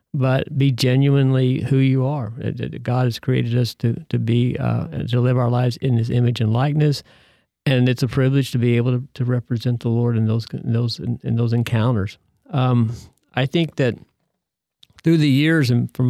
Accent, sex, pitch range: American, male, 120-135 Hz